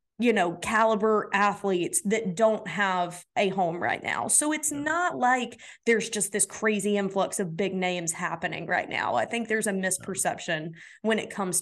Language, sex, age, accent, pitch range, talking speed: English, female, 20-39, American, 195-235 Hz, 175 wpm